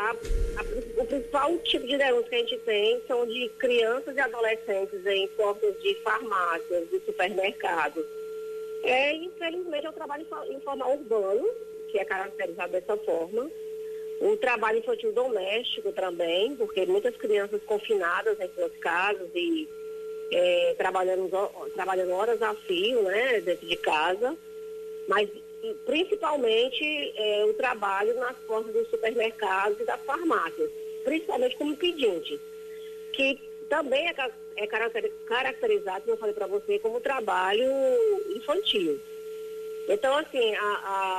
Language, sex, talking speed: Portuguese, female, 130 wpm